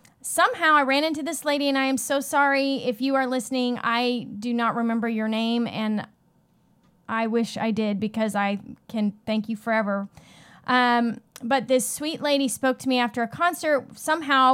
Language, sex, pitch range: English, female, 235-280 Hz